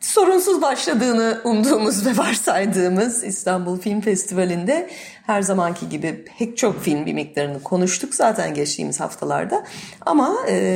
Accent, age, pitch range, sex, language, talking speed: native, 40-59, 155-220 Hz, female, Turkish, 115 wpm